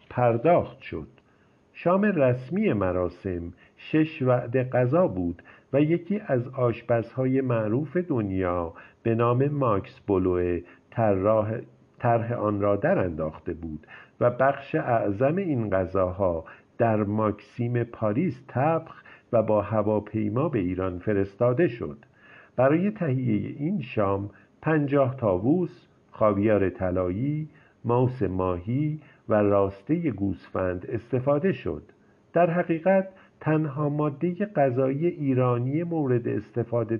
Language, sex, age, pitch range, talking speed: Persian, male, 50-69, 105-145 Hz, 105 wpm